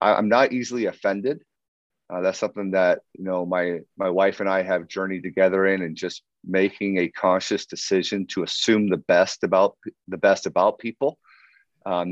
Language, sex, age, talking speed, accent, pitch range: English, male, 40-59, 175 wpm, American, 95-110 Hz